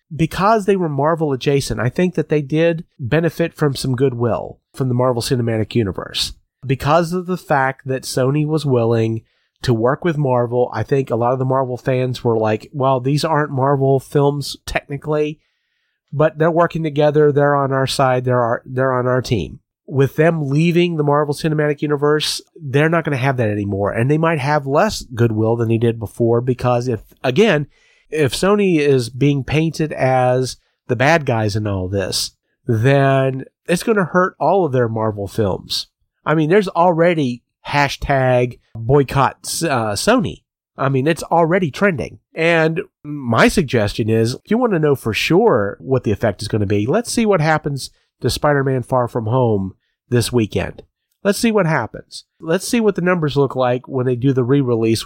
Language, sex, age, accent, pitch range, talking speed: English, male, 40-59, American, 120-160 Hz, 185 wpm